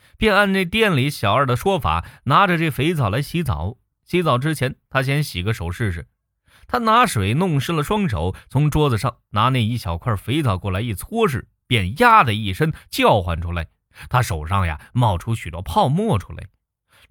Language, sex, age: Chinese, male, 20-39